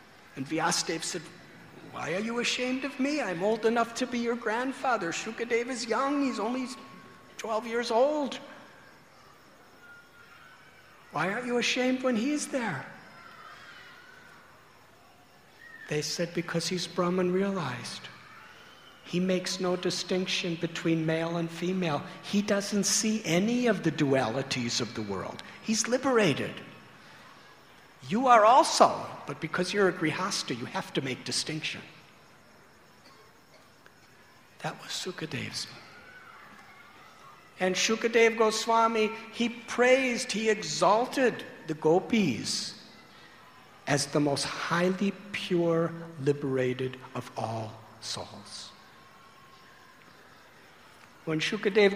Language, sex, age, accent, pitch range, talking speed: English, male, 60-79, American, 165-230 Hz, 105 wpm